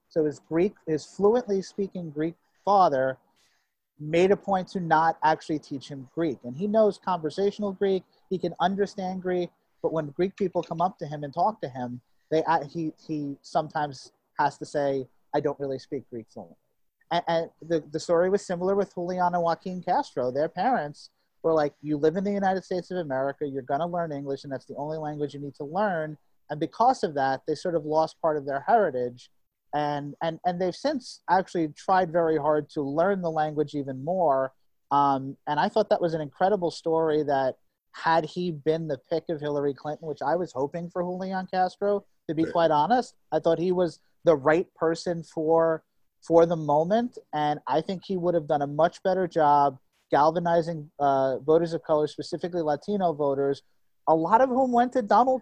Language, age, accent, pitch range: English, 30-49, American, 145-180 Hz